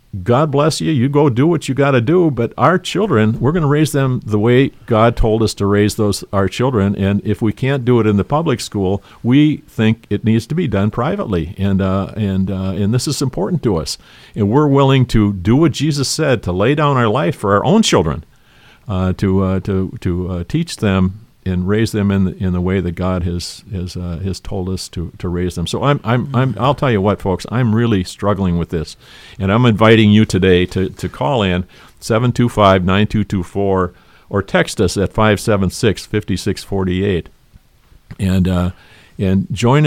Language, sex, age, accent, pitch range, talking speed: English, male, 50-69, American, 95-125 Hz, 210 wpm